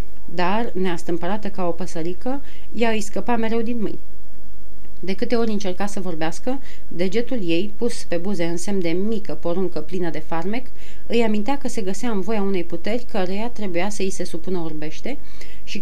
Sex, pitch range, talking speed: female, 180-225 Hz, 180 wpm